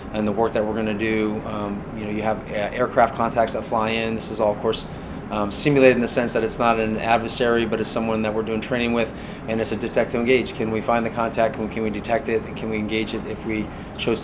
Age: 30-49